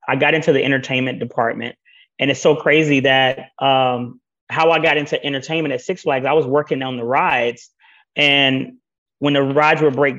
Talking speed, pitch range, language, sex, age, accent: 190 wpm, 125-145 Hz, English, male, 30-49, American